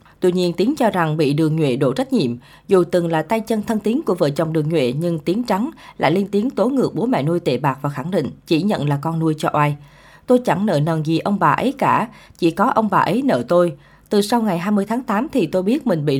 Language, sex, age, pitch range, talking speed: Vietnamese, female, 20-39, 160-215 Hz, 270 wpm